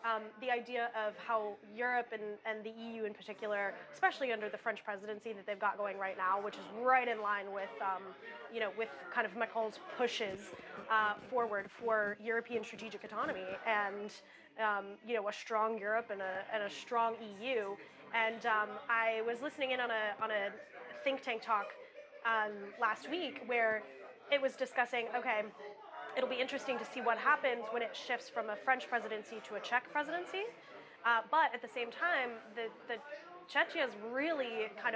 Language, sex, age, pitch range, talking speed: English, female, 10-29, 210-250 Hz, 180 wpm